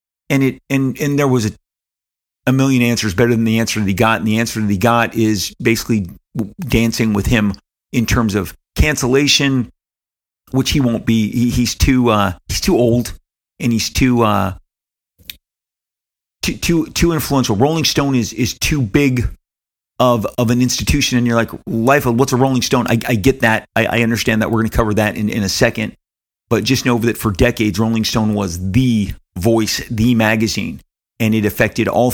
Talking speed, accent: 190 wpm, American